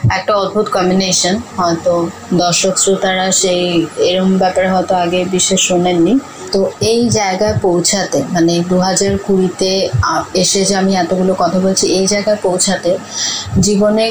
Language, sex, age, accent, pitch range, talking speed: Bengali, female, 30-49, native, 180-200 Hz, 130 wpm